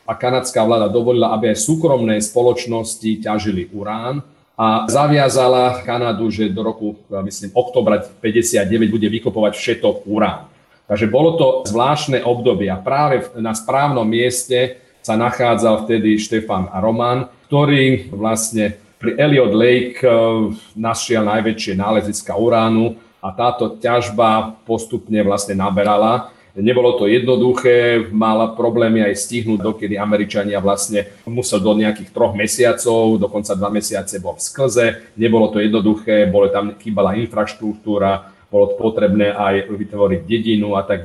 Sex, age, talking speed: male, 40-59, 130 wpm